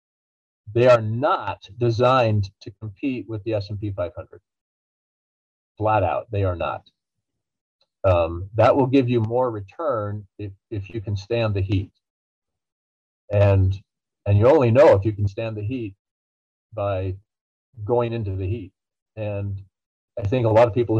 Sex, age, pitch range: male, 40-59, 100-120 Hz